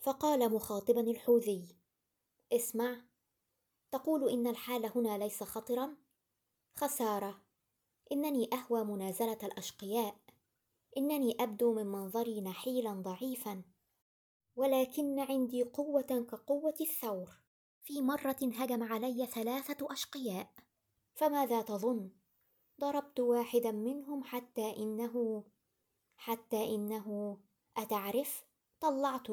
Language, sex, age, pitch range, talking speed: Arabic, male, 20-39, 210-260 Hz, 90 wpm